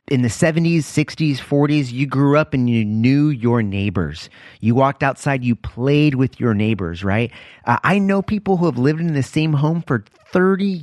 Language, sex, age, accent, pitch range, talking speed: English, male, 30-49, American, 110-150 Hz, 195 wpm